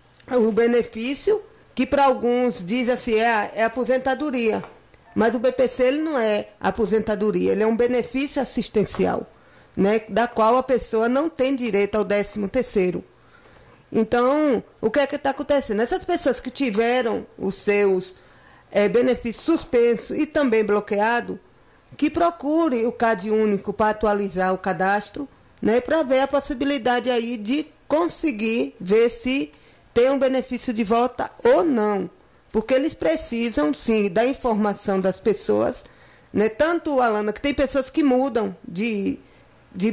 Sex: female